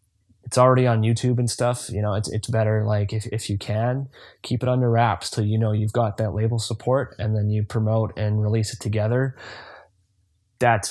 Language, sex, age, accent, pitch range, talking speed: English, male, 20-39, American, 105-115 Hz, 205 wpm